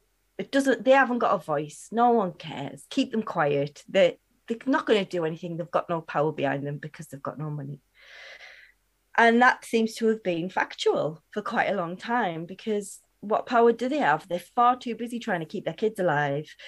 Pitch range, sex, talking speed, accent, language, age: 175-230 Hz, female, 210 wpm, British, English, 30-49